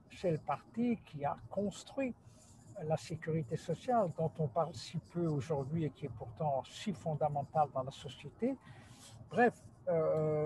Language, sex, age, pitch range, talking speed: French, male, 60-79, 145-200 Hz, 150 wpm